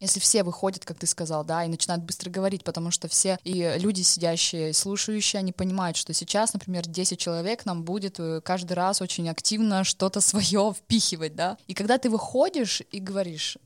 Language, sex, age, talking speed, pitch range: Russian, female, 20-39, 185 wpm, 170-210 Hz